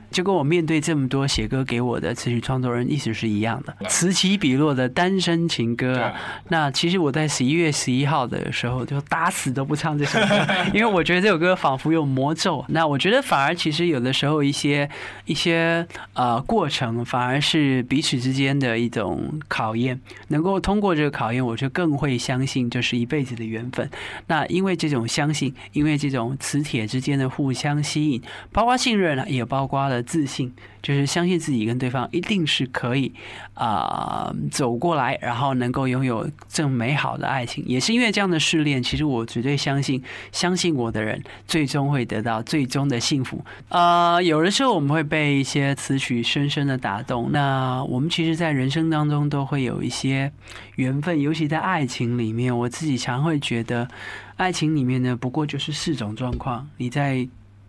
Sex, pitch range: male, 125-160 Hz